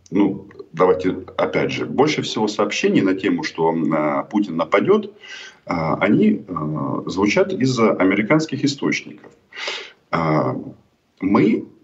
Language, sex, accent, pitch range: Russian, male, native, 95-155 Hz